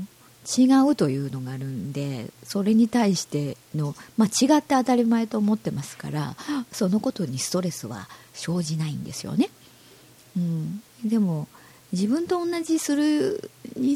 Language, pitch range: Japanese, 150-220 Hz